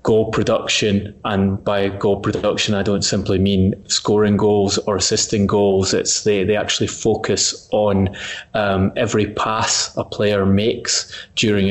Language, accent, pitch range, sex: English, British, 95-105 Hz, male